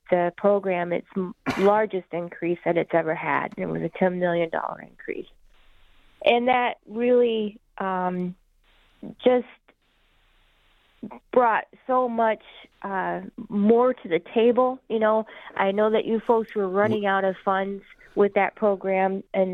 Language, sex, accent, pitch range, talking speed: English, female, American, 180-215 Hz, 135 wpm